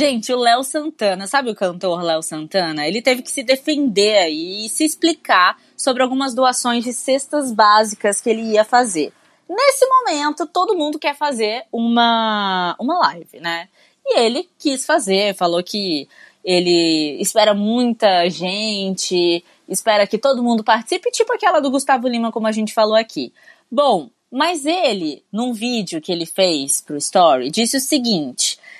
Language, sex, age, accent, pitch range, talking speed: Portuguese, female, 20-39, Brazilian, 215-325 Hz, 155 wpm